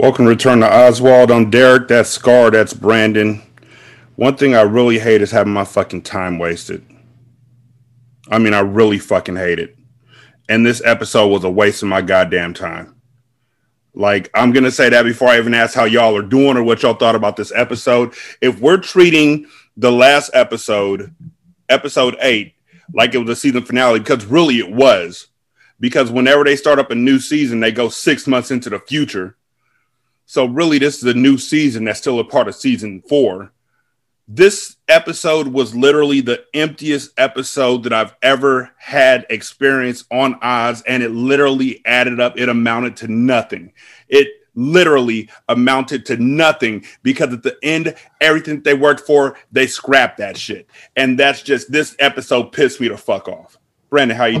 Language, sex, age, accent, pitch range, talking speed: English, male, 30-49, American, 115-140 Hz, 175 wpm